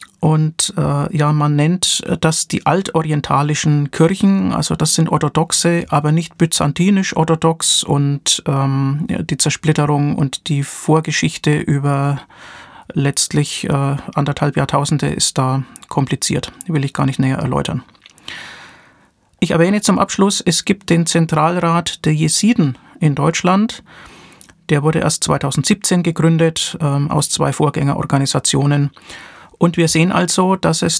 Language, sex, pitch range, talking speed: German, male, 145-170 Hz, 125 wpm